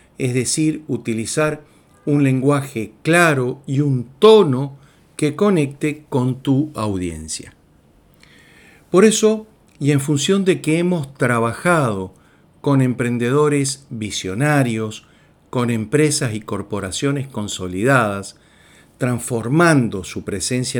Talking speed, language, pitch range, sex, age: 100 wpm, Spanish, 110-150 Hz, male, 50-69